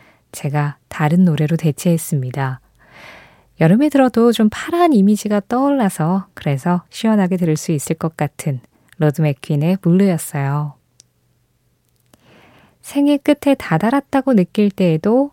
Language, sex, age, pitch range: Korean, female, 20-39, 150-200 Hz